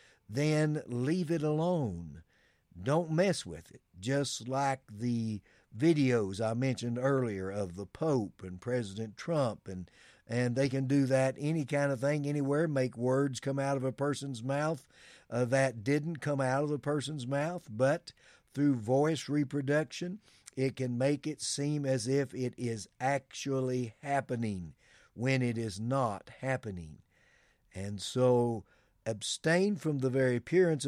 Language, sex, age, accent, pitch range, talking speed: English, male, 50-69, American, 115-140 Hz, 145 wpm